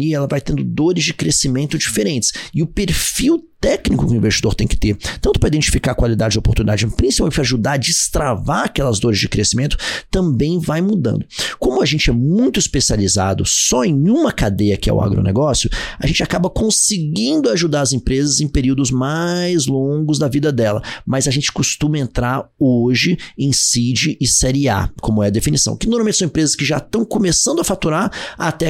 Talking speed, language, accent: 190 wpm, Portuguese, Brazilian